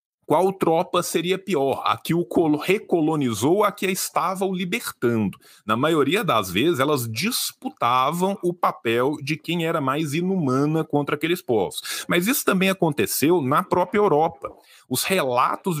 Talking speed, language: 145 wpm, Portuguese